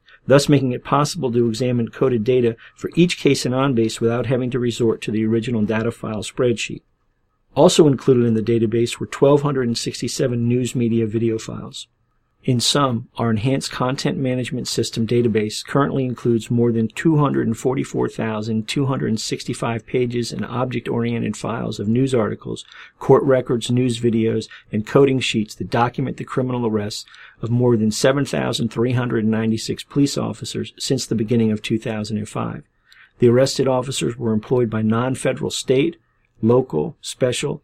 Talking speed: 140 wpm